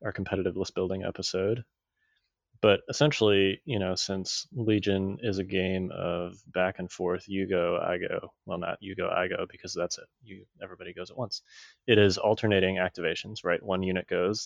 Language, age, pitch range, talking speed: English, 20-39, 90-100 Hz, 185 wpm